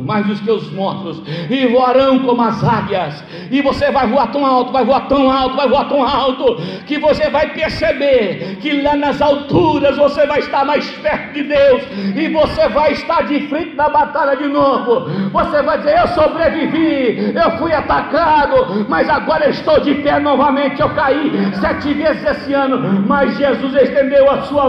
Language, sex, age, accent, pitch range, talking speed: Portuguese, male, 60-79, Brazilian, 230-290 Hz, 180 wpm